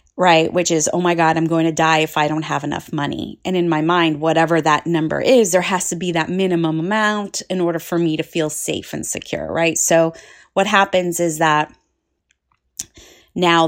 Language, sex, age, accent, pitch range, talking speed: English, female, 30-49, American, 165-210 Hz, 205 wpm